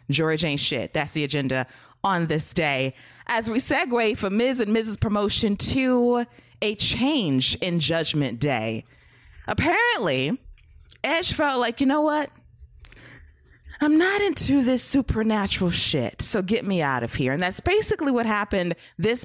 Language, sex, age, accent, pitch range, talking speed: English, female, 20-39, American, 155-220 Hz, 150 wpm